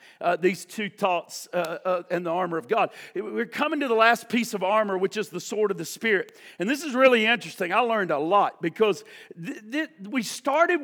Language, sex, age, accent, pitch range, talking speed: English, male, 50-69, American, 215-285 Hz, 210 wpm